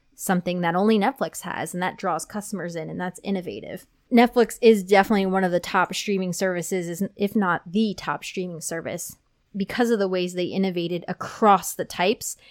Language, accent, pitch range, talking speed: English, American, 180-220 Hz, 175 wpm